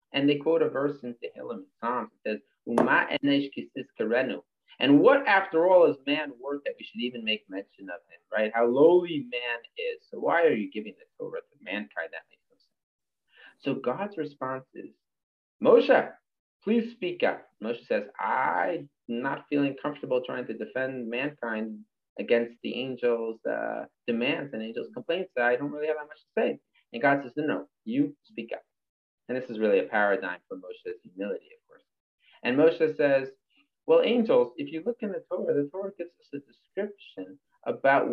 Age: 30-49